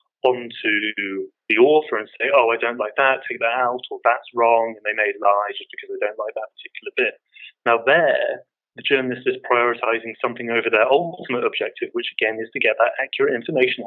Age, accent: 30-49, British